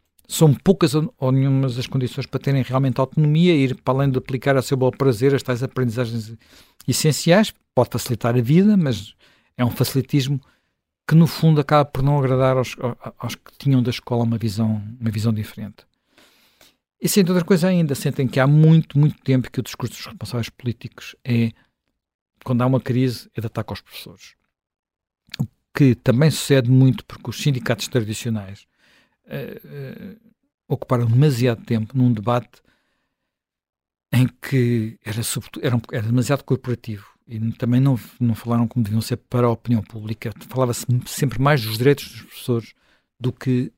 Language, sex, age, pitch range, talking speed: Portuguese, male, 50-69, 115-135 Hz, 160 wpm